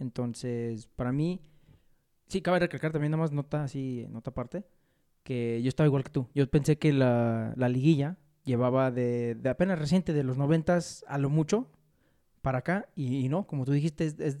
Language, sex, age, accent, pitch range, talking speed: Spanish, male, 30-49, Mexican, 130-160 Hz, 195 wpm